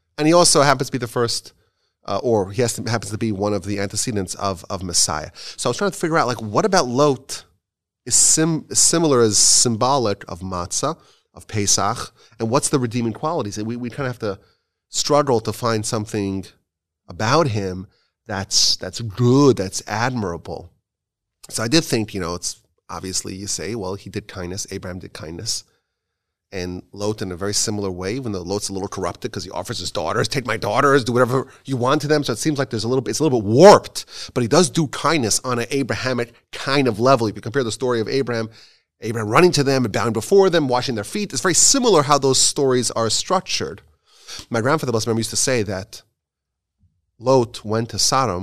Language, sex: English, male